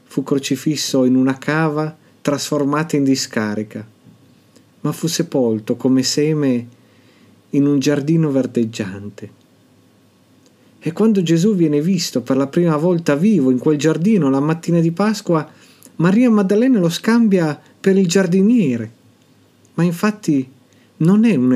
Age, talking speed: 50-69, 130 wpm